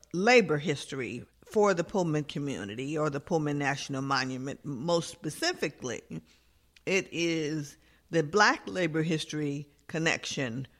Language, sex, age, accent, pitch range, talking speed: English, female, 50-69, American, 150-190 Hz, 110 wpm